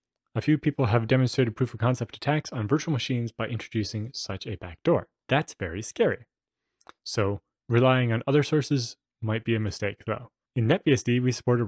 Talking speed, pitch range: 170 wpm, 110-135 Hz